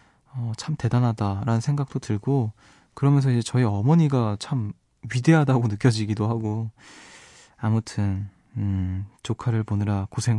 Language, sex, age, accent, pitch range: Korean, male, 20-39, native, 110-140 Hz